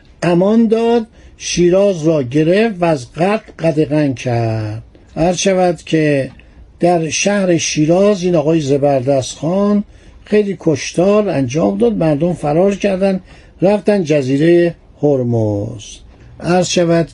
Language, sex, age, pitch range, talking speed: Persian, male, 60-79, 150-200 Hz, 110 wpm